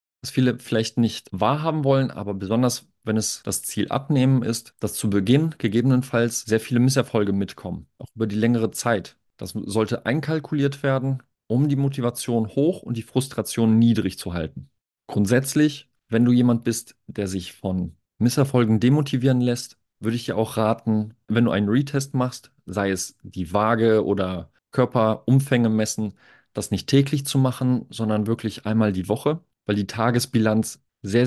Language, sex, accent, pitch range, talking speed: German, male, German, 105-125 Hz, 160 wpm